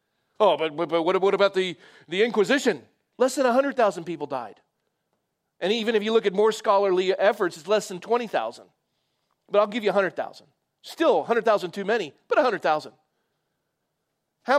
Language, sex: English, male